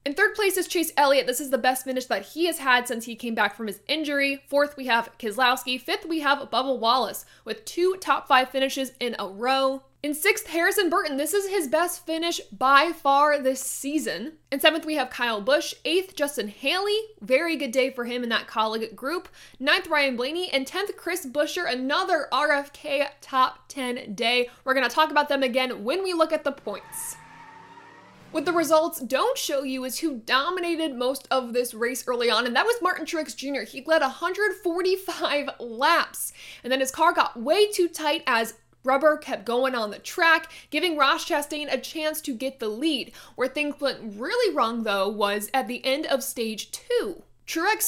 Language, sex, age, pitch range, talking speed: English, female, 20-39, 255-330 Hz, 195 wpm